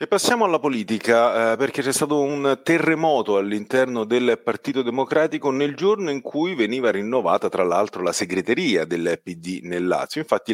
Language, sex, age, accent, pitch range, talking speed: Italian, male, 40-59, native, 105-170 Hz, 165 wpm